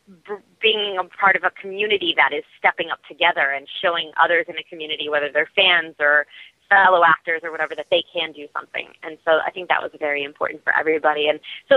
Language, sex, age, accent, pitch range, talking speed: English, female, 30-49, American, 150-185 Hz, 215 wpm